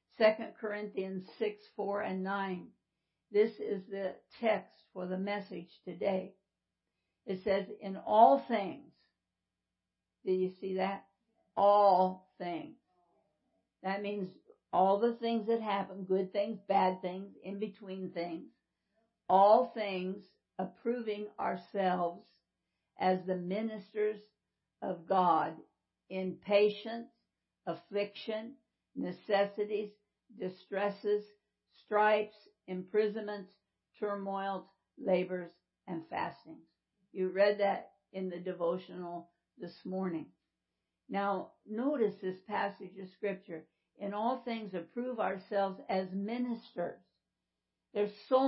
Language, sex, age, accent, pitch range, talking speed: English, female, 60-79, American, 185-215 Hz, 100 wpm